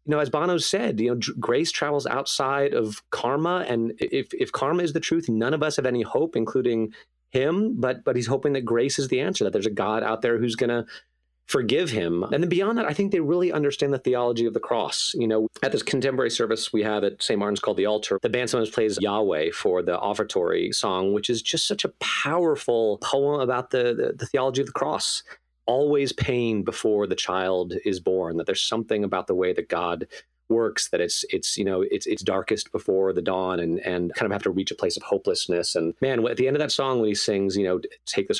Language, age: English, 30-49